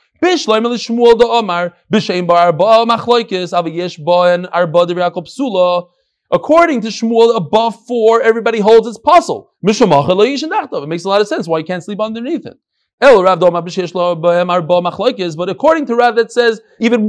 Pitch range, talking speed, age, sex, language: 175-240 Hz, 100 wpm, 30-49, male, English